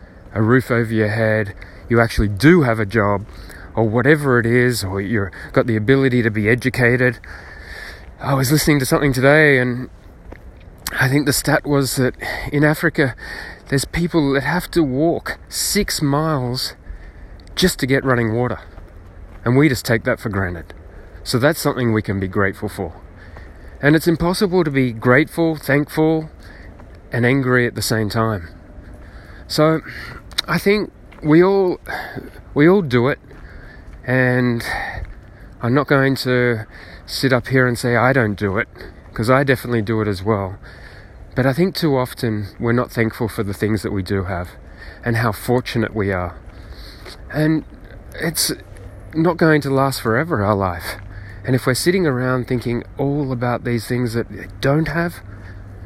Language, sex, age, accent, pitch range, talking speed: English, male, 30-49, Australian, 100-135 Hz, 165 wpm